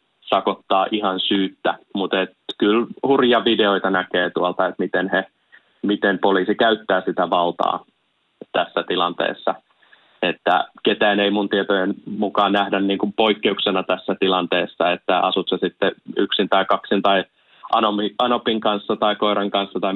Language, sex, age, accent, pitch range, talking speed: Finnish, male, 20-39, native, 95-105 Hz, 130 wpm